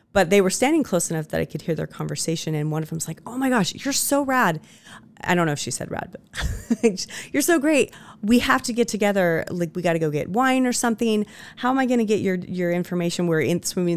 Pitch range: 165-215 Hz